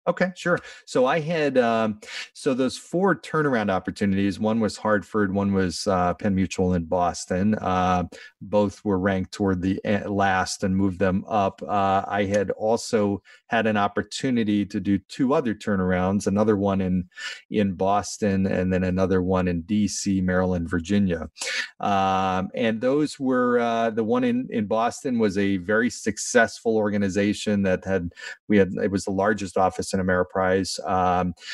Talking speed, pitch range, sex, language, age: 160 wpm, 95-110 Hz, male, English, 30-49